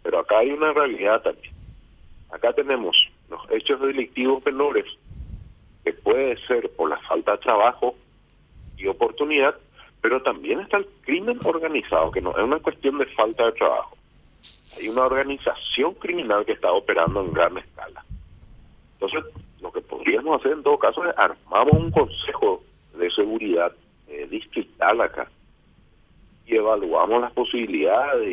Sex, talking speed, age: male, 145 wpm, 50-69